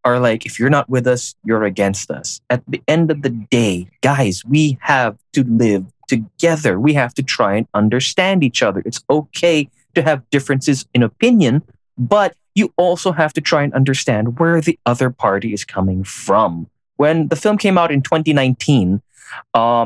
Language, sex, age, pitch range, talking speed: English, male, 20-39, 115-140 Hz, 180 wpm